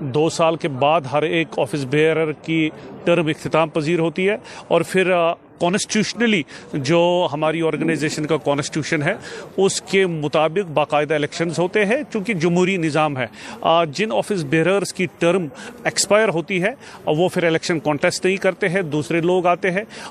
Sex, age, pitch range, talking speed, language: male, 40-59, 155-180 Hz, 160 wpm, Urdu